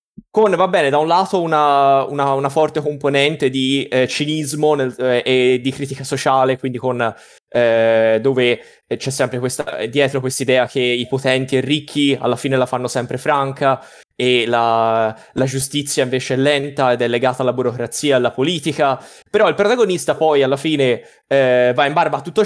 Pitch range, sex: 130-155 Hz, male